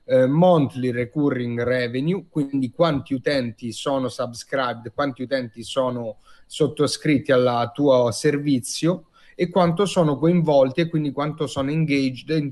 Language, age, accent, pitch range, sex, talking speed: Italian, 30-49, native, 125-155 Hz, male, 125 wpm